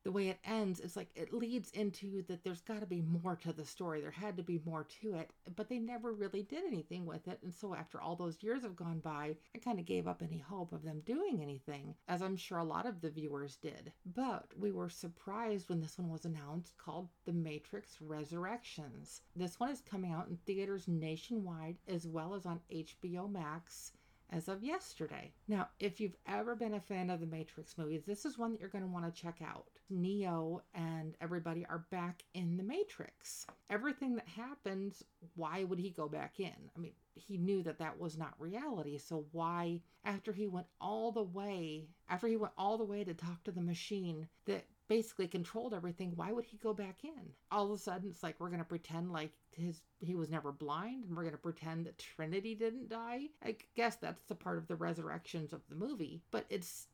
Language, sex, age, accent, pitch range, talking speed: English, female, 40-59, American, 165-210 Hz, 215 wpm